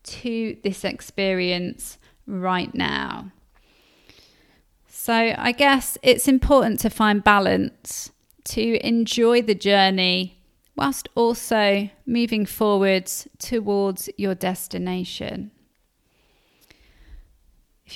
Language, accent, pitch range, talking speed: English, British, 195-230 Hz, 85 wpm